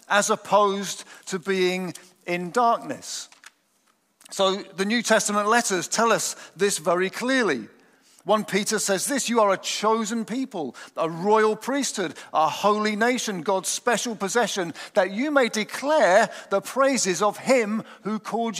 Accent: British